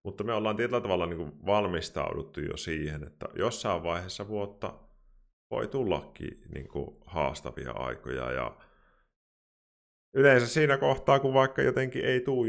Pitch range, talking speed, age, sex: 75-100 Hz, 120 wpm, 30-49, male